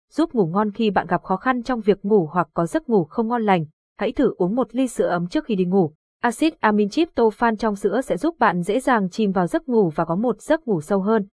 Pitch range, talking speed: 195-245 Hz, 270 wpm